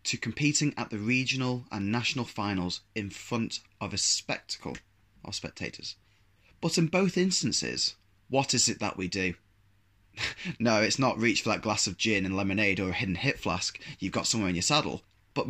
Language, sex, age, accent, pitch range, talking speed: English, male, 20-39, British, 100-125 Hz, 185 wpm